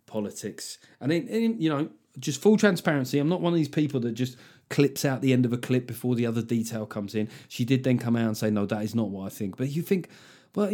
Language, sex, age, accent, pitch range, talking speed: English, male, 30-49, British, 120-170 Hz, 270 wpm